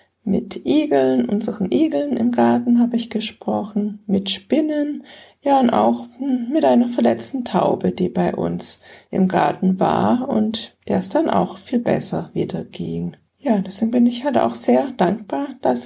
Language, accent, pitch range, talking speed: German, German, 195-240 Hz, 160 wpm